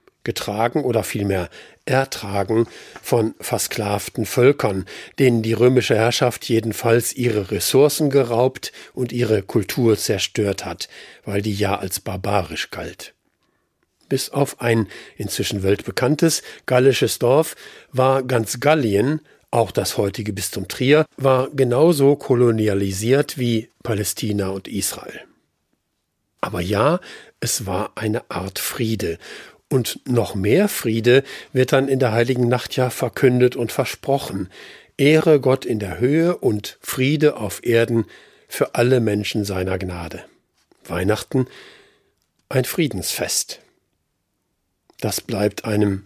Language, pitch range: German, 105-130 Hz